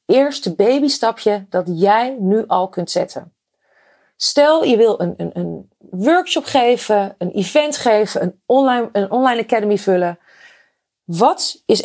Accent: Dutch